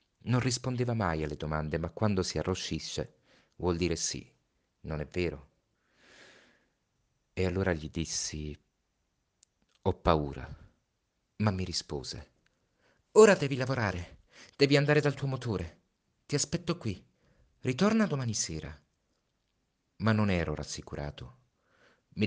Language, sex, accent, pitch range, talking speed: Italian, male, native, 80-120 Hz, 115 wpm